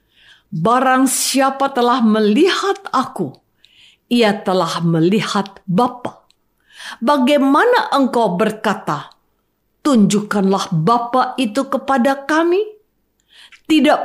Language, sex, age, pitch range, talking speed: Indonesian, female, 50-69, 180-275 Hz, 75 wpm